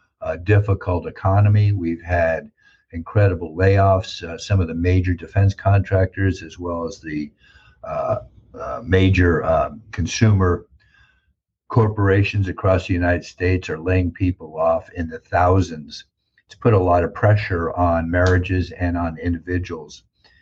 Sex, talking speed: male, 135 wpm